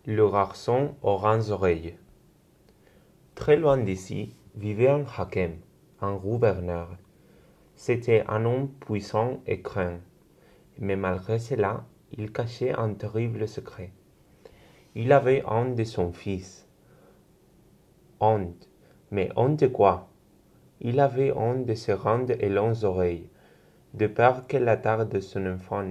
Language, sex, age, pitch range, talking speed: Spanish, male, 30-49, 95-120 Hz, 125 wpm